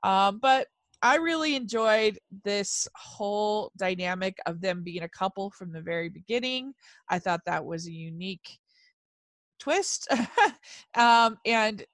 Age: 20-39